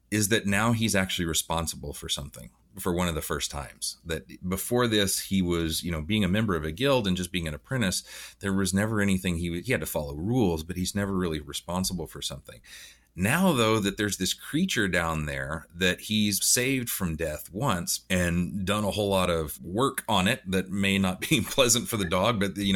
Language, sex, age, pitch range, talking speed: English, male, 30-49, 85-105 Hz, 215 wpm